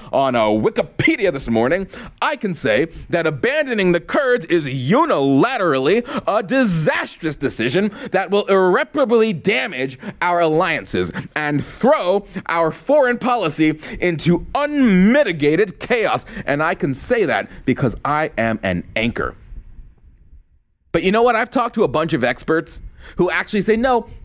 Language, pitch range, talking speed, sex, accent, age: English, 150-220 Hz, 140 wpm, male, American, 30-49